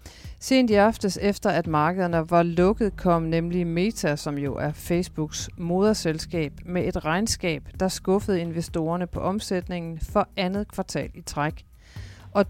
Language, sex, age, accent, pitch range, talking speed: Danish, female, 40-59, native, 165-205 Hz, 145 wpm